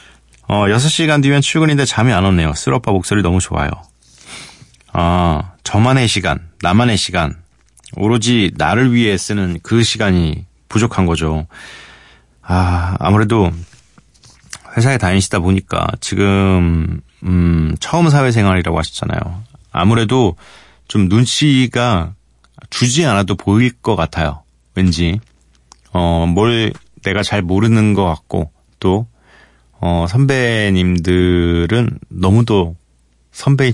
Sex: male